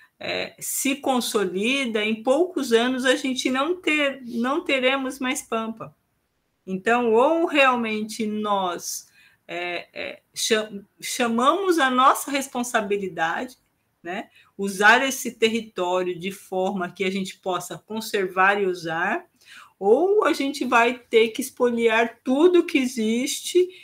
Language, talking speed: Portuguese, 120 wpm